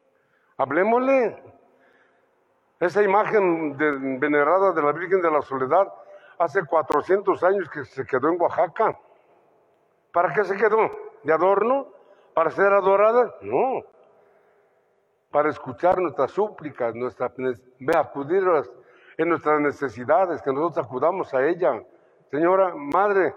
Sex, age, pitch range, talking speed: male, 60-79, 155-225 Hz, 115 wpm